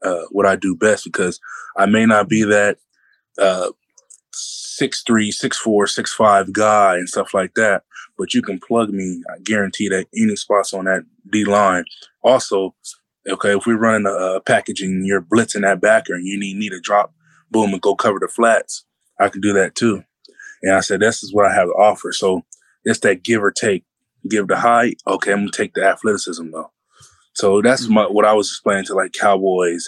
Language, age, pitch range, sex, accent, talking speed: English, 20-39, 95-110 Hz, male, American, 200 wpm